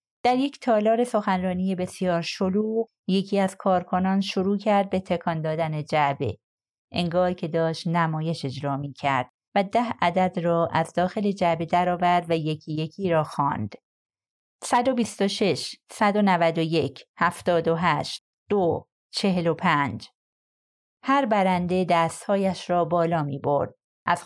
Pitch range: 160-210 Hz